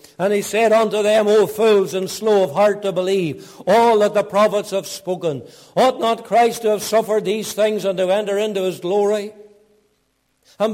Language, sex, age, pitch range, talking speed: English, male, 60-79, 195-230 Hz, 190 wpm